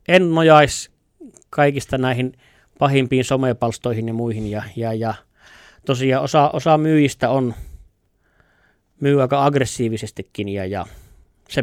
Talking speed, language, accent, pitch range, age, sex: 110 wpm, Finnish, native, 115-140 Hz, 30-49, male